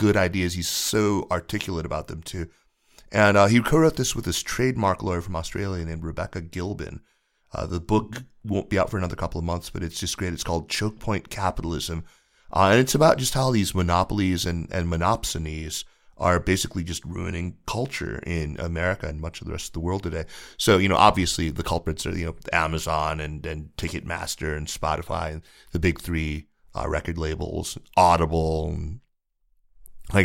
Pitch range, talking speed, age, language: 80-95 Hz, 185 wpm, 30-49, English